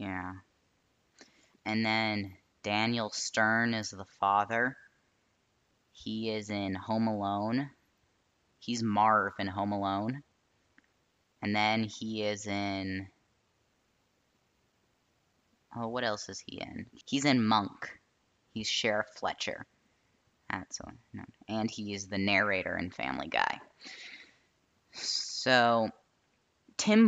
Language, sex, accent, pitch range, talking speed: English, female, American, 100-115 Hz, 100 wpm